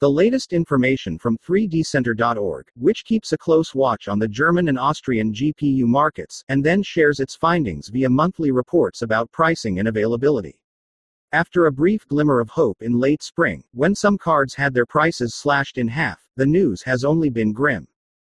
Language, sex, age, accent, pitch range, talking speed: English, male, 40-59, American, 120-160 Hz, 175 wpm